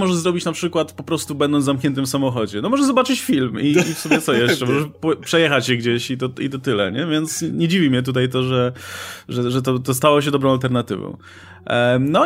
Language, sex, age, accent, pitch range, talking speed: Polish, male, 20-39, native, 125-170 Hz, 230 wpm